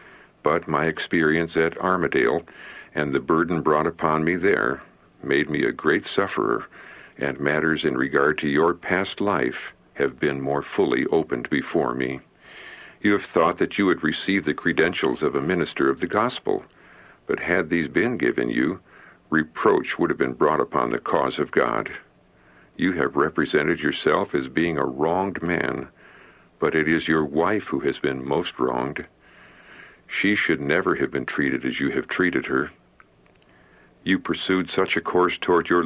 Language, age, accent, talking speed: English, 60-79, American, 165 wpm